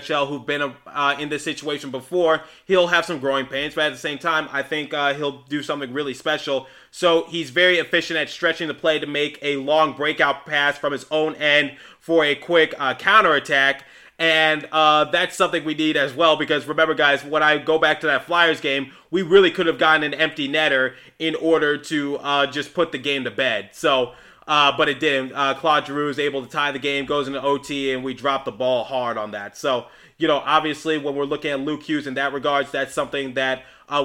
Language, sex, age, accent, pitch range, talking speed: English, male, 20-39, American, 140-155 Hz, 225 wpm